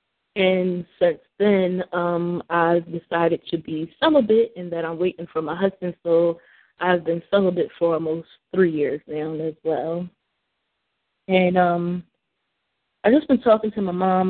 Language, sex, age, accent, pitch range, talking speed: English, female, 20-39, American, 170-195 Hz, 150 wpm